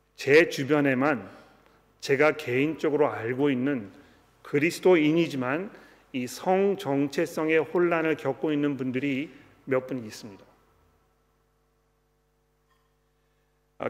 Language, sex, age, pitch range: Korean, male, 40-59, 140-190 Hz